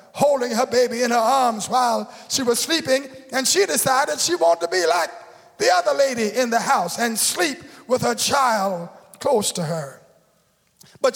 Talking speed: 175 wpm